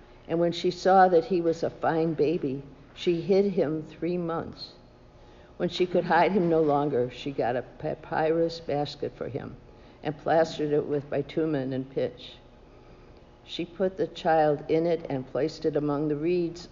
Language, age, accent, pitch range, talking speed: English, 60-79, American, 145-180 Hz, 170 wpm